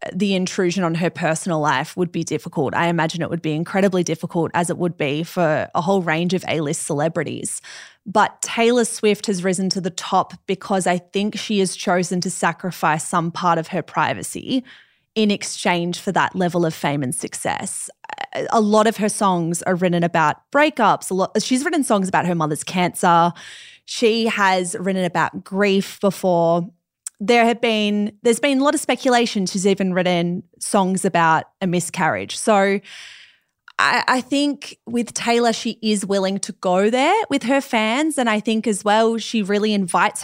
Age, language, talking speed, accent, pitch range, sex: 20-39, English, 175 wpm, Australian, 175-215 Hz, female